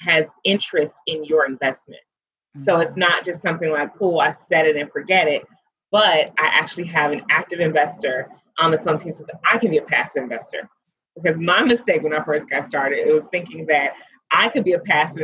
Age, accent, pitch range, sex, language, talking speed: 30-49, American, 150-180 Hz, female, English, 215 wpm